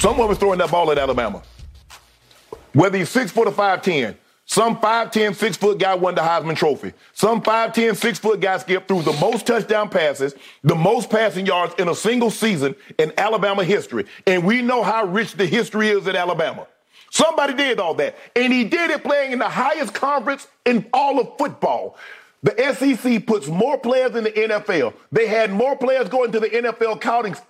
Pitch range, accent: 175-240 Hz, American